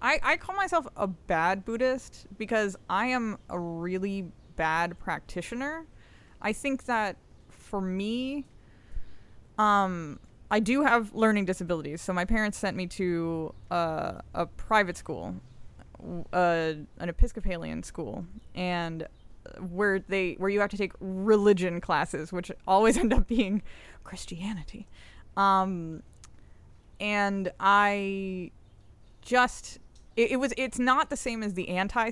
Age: 20-39